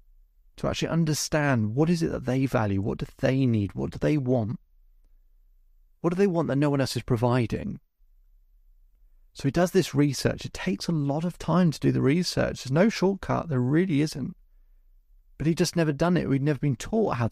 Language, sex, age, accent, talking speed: English, male, 30-49, British, 205 wpm